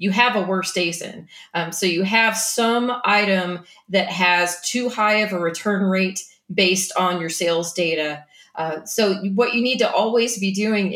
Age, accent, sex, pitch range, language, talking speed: 30-49, American, female, 175-220 Hz, English, 180 wpm